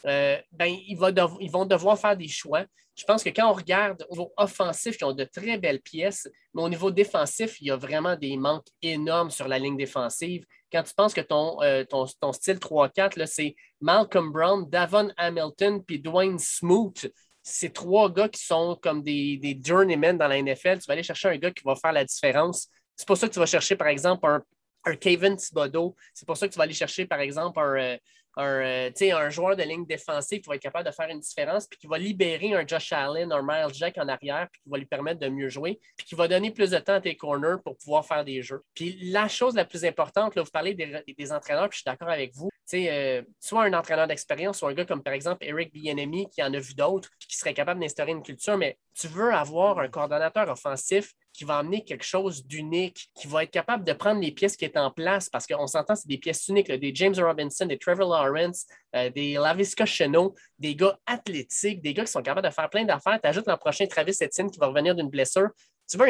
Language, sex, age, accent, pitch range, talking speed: French, male, 20-39, Canadian, 150-195 Hz, 240 wpm